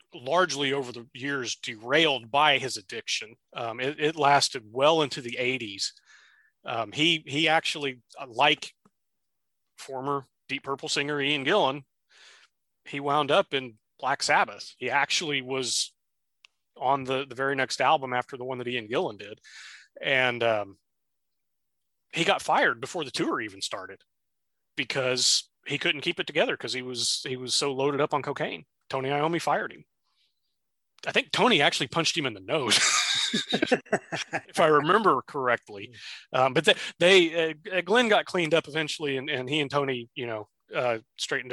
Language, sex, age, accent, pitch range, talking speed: English, male, 30-49, American, 120-150 Hz, 160 wpm